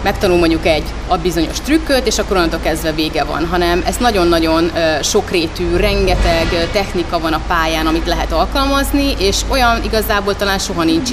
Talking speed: 160 wpm